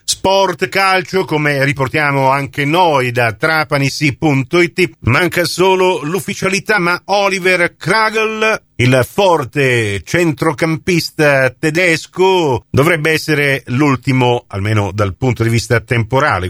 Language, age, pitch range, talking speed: Italian, 50-69, 115-155 Hz, 100 wpm